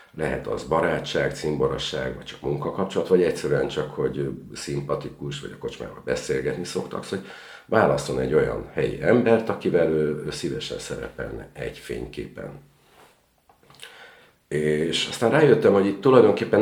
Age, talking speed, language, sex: 50-69, 135 wpm, Hungarian, male